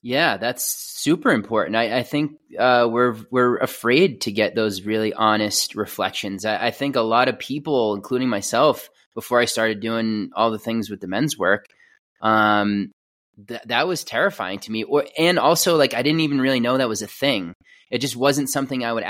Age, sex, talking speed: 20-39, male, 200 wpm